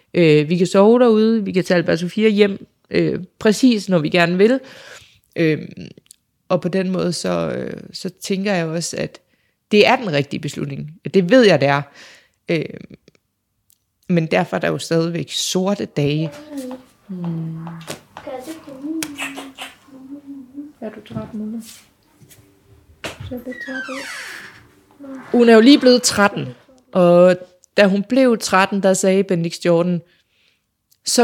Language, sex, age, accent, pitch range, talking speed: Danish, female, 20-39, native, 170-220 Hz, 115 wpm